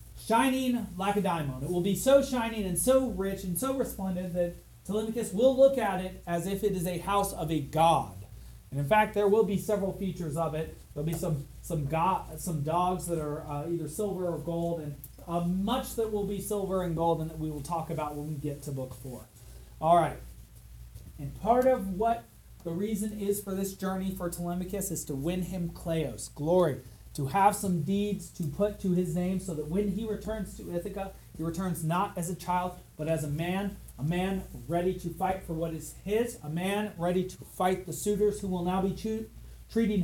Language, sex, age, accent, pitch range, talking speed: English, male, 30-49, American, 160-200 Hz, 215 wpm